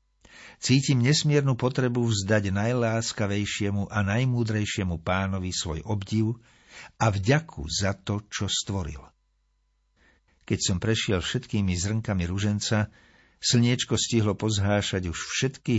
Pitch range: 90-120 Hz